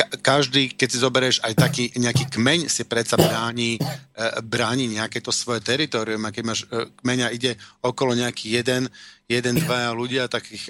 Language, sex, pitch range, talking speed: Slovak, male, 115-130 Hz, 155 wpm